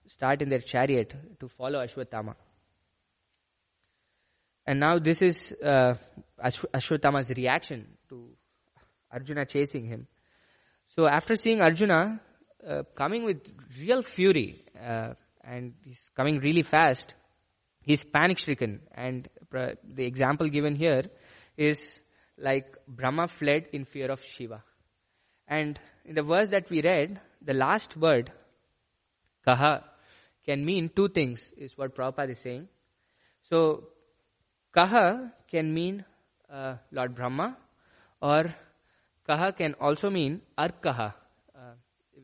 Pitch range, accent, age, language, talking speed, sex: 125-160 Hz, Indian, 20-39, English, 120 wpm, male